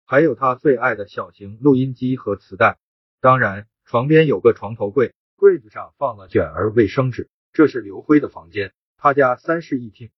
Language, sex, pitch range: Chinese, male, 120-155 Hz